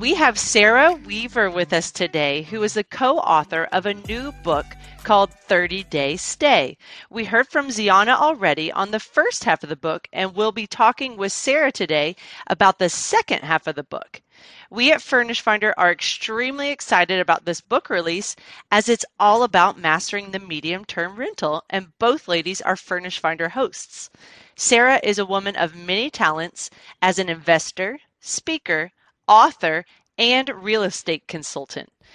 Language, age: English, 40-59